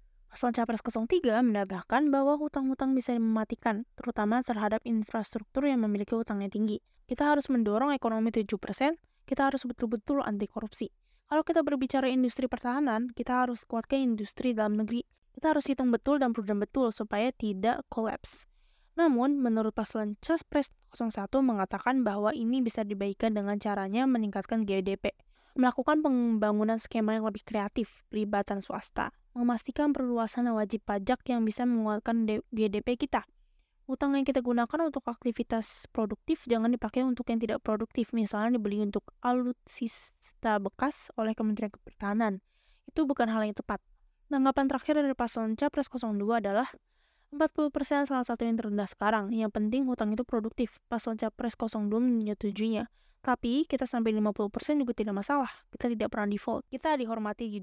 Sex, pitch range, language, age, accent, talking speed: female, 215-260 Hz, Indonesian, 20-39, native, 150 wpm